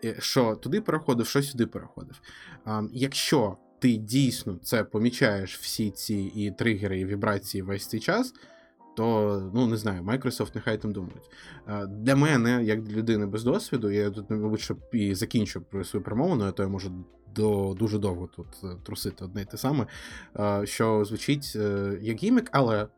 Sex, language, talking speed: male, Ukrainian, 165 wpm